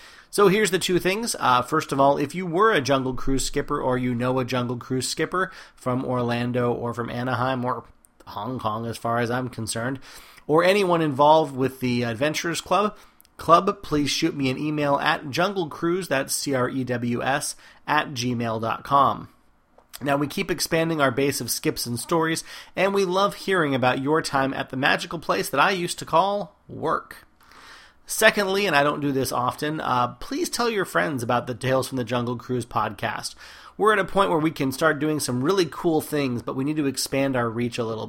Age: 30-49